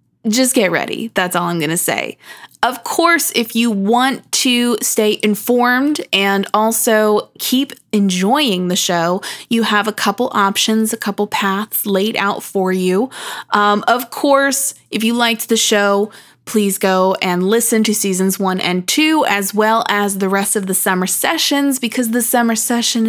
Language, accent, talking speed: English, American, 170 wpm